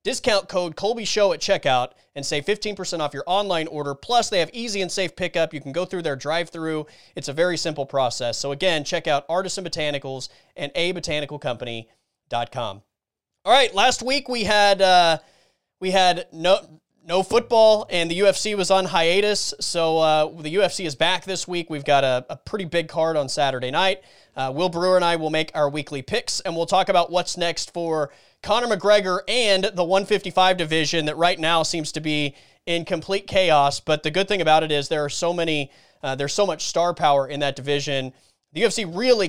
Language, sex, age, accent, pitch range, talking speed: English, male, 30-49, American, 140-185 Hz, 195 wpm